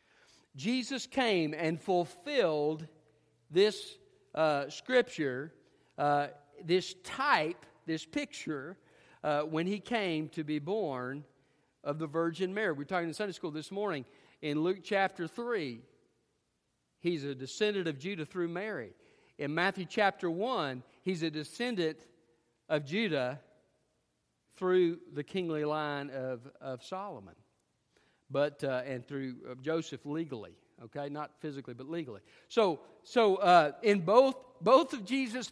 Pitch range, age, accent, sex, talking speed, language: 140-205 Hz, 50-69, American, male, 130 wpm, English